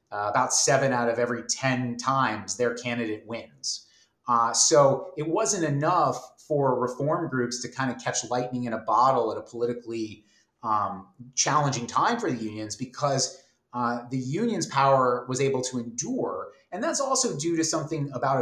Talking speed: 170 wpm